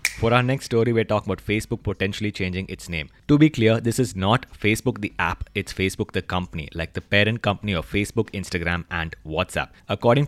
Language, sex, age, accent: English, male, 20-39, Indian